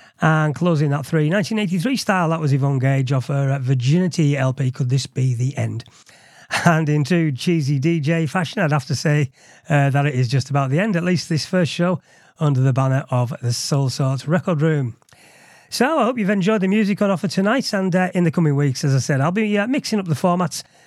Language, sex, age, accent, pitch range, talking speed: English, male, 30-49, British, 135-180 Hz, 220 wpm